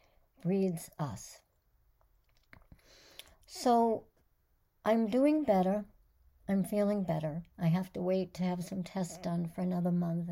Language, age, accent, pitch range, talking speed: English, 60-79, American, 170-200 Hz, 120 wpm